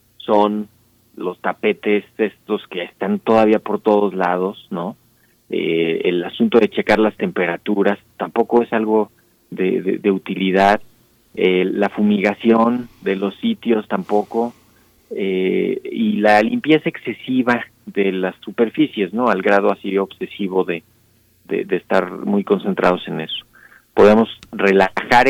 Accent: Mexican